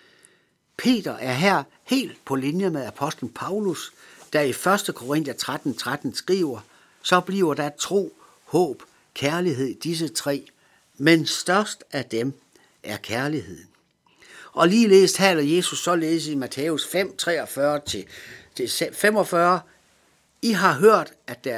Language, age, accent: Danish, 60-79, native